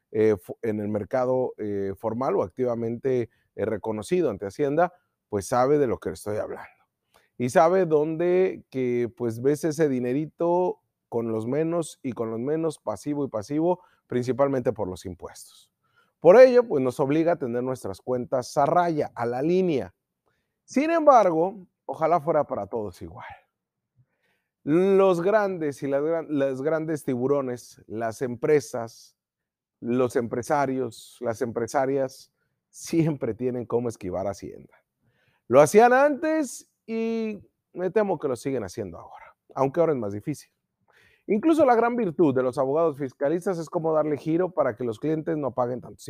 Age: 30-49